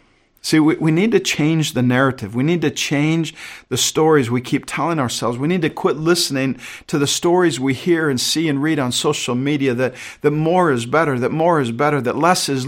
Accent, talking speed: American, 220 wpm